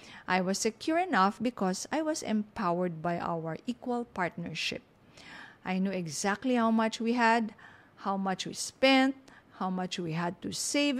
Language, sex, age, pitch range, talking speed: English, female, 50-69, 180-240 Hz, 160 wpm